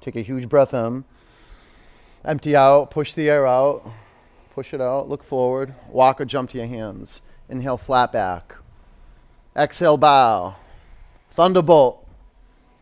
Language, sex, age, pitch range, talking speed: English, male, 30-49, 115-145 Hz, 130 wpm